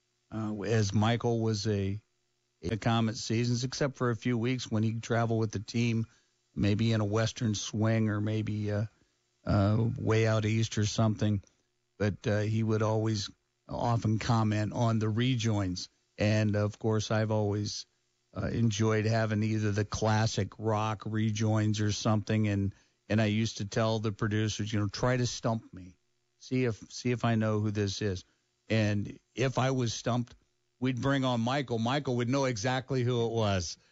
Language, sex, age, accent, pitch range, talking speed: English, male, 50-69, American, 105-115 Hz, 175 wpm